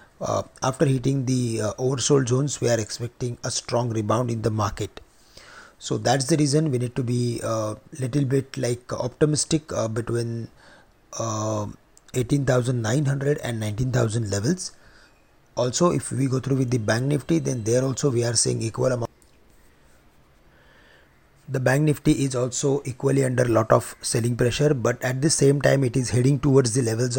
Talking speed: 165 wpm